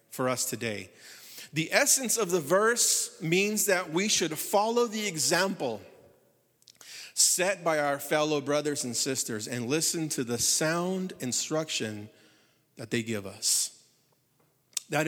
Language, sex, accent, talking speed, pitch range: English, male, American, 130 wpm, 125-165 Hz